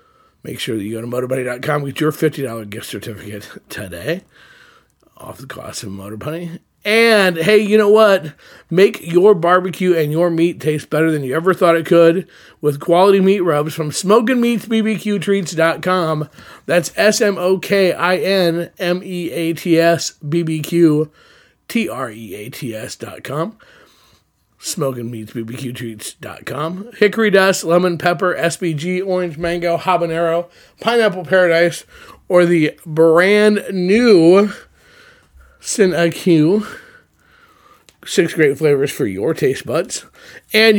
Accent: American